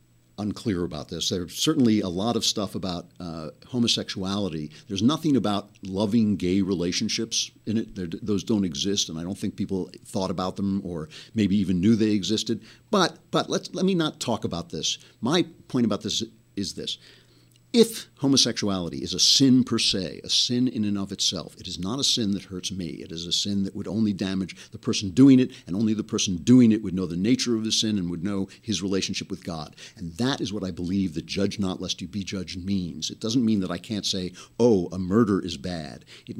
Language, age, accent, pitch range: English, 60-79, American, 90-115 Hz